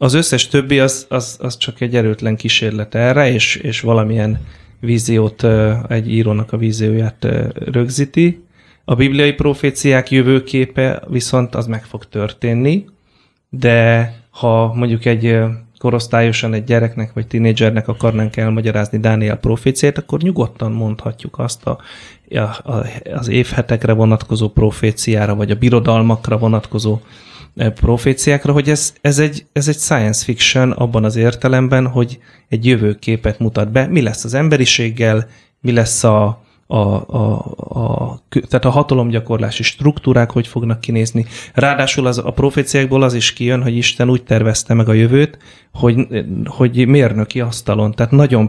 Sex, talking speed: male, 140 wpm